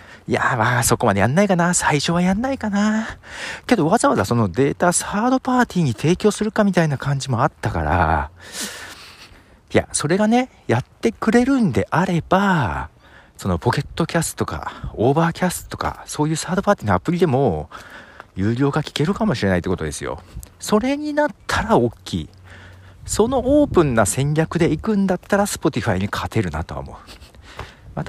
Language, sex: Japanese, male